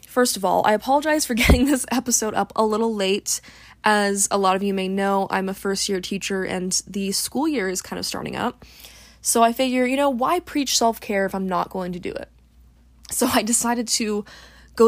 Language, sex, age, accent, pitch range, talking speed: English, female, 20-39, American, 195-245 Hz, 220 wpm